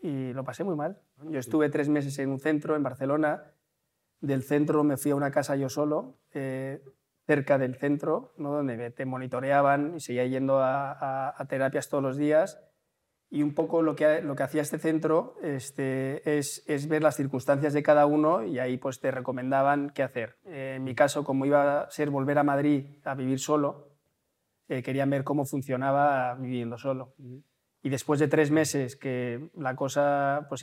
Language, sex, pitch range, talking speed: Spanish, male, 130-150 Hz, 190 wpm